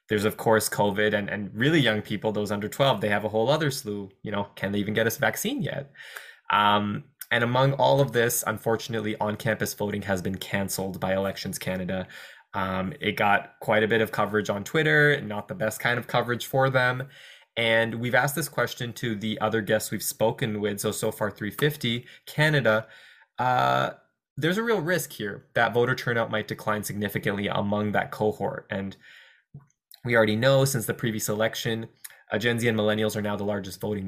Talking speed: 195 wpm